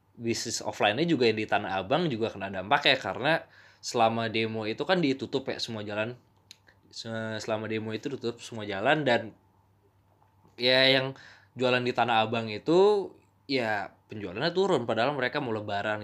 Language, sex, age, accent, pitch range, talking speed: Indonesian, male, 20-39, native, 105-150 Hz, 155 wpm